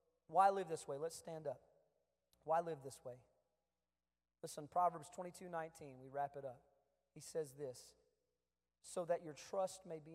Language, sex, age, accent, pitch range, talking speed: English, male, 40-59, American, 135-165 Hz, 170 wpm